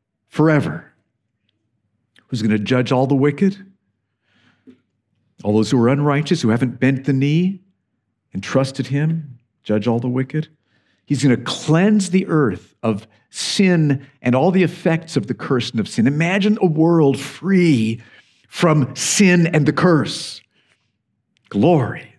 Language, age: English, 50-69